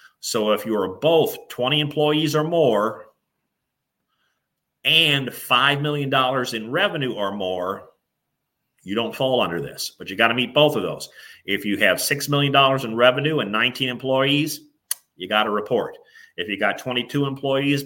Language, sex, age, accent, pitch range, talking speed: English, male, 40-59, American, 110-140 Hz, 170 wpm